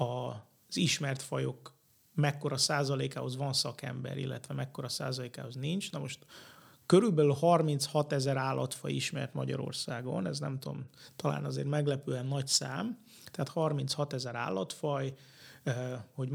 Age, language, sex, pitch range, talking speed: 30-49, Hungarian, male, 125-145 Hz, 115 wpm